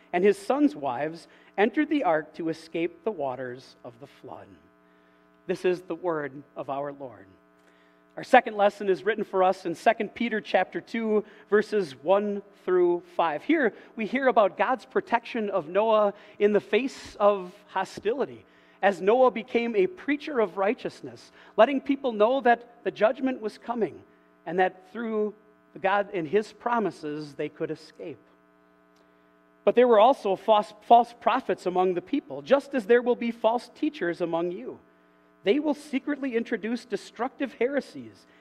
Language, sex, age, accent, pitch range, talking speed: English, male, 40-59, American, 160-235 Hz, 155 wpm